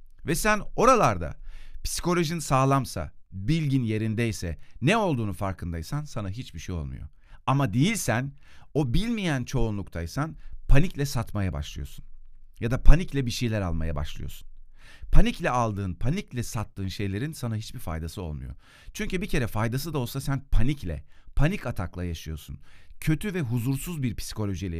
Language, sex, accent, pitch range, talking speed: Turkish, male, native, 85-135 Hz, 130 wpm